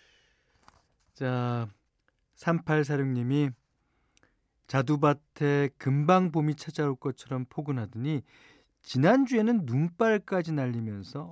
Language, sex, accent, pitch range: Korean, male, native, 110-160 Hz